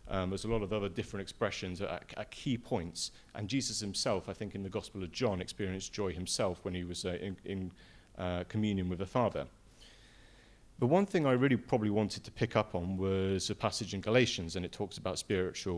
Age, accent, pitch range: 40-59, British, 95-110 Hz